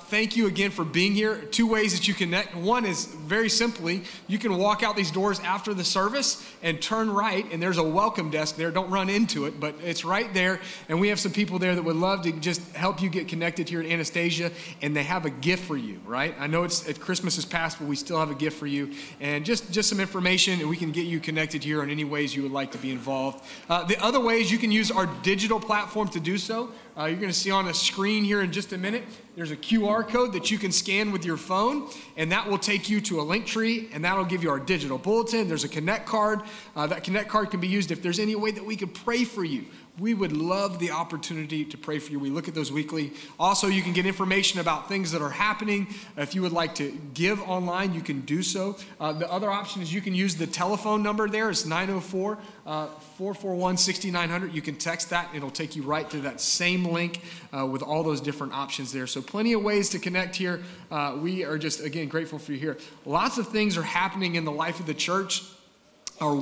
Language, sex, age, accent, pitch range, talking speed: English, male, 30-49, American, 160-205 Hz, 245 wpm